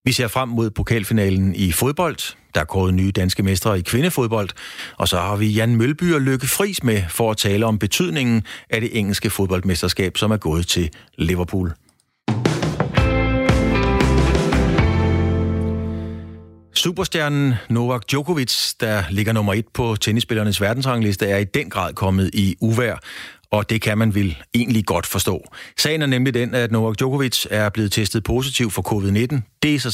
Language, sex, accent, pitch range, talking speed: Danish, male, native, 100-125 Hz, 160 wpm